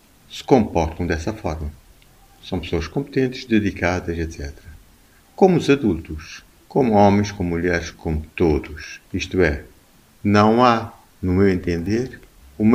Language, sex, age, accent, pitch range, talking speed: Portuguese, male, 50-69, Brazilian, 85-110 Hz, 120 wpm